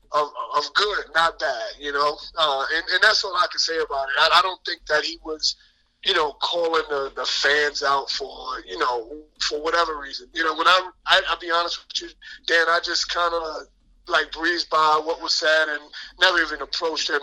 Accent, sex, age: American, male, 30-49